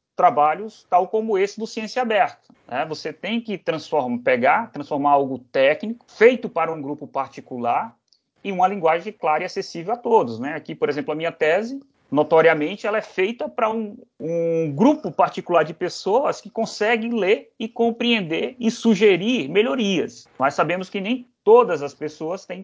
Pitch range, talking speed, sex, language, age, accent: 150-225 Hz, 165 wpm, male, Portuguese, 30-49, Brazilian